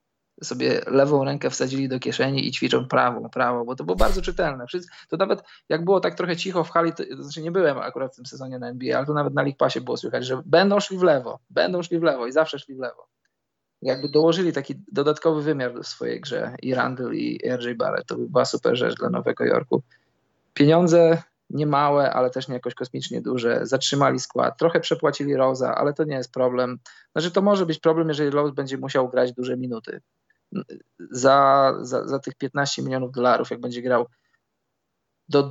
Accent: native